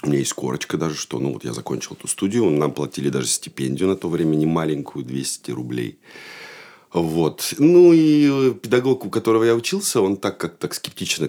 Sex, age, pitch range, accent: male, 40-59, 70-105 Hz, native